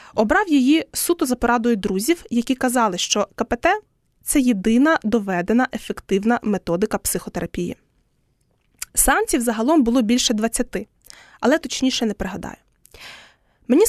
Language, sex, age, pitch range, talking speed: Ukrainian, female, 20-39, 215-285 Hz, 115 wpm